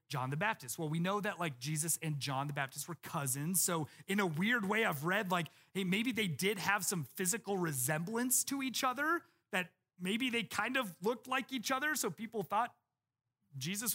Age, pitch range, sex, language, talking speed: 30-49, 155-225 Hz, male, English, 200 wpm